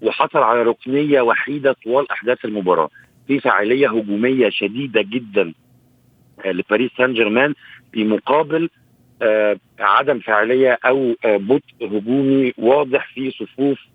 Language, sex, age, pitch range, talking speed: Arabic, male, 50-69, 110-135 Hz, 110 wpm